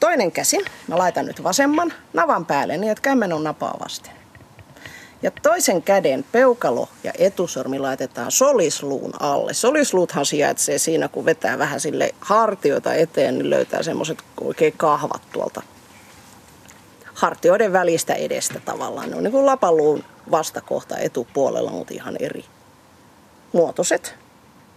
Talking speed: 130 wpm